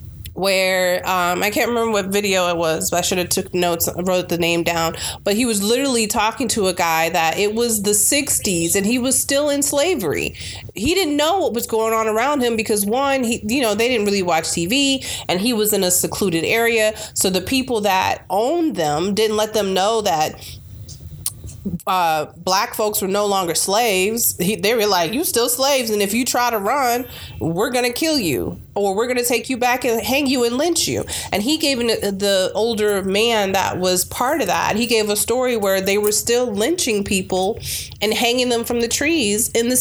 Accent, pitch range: American, 190-245 Hz